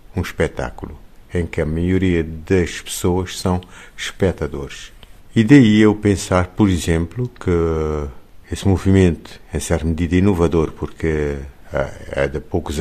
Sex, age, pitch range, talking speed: male, 60-79, 75-95 Hz, 125 wpm